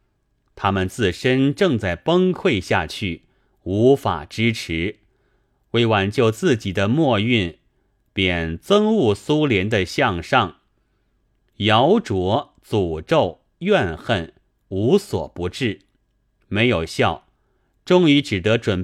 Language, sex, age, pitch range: Chinese, male, 30-49, 95-130 Hz